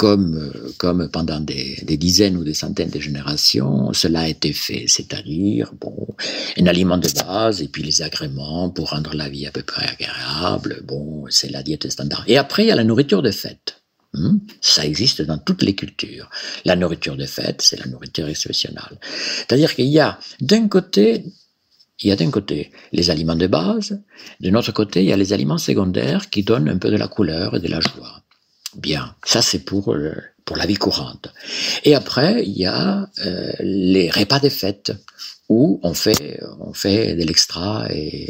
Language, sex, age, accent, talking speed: French, male, 50-69, French, 195 wpm